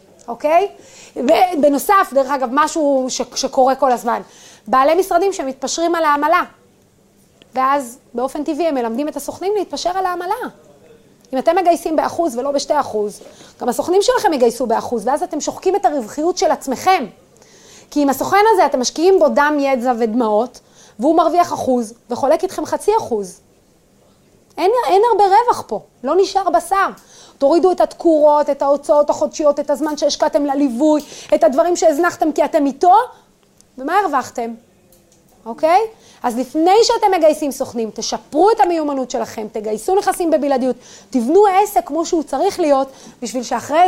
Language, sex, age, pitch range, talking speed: Hebrew, female, 30-49, 255-345 Hz, 150 wpm